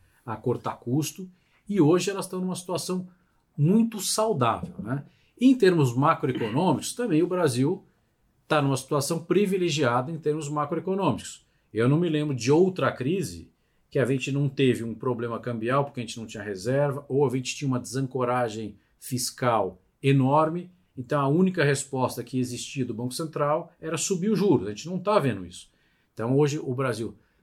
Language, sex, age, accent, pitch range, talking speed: Portuguese, male, 50-69, Brazilian, 120-165 Hz, 170 wpm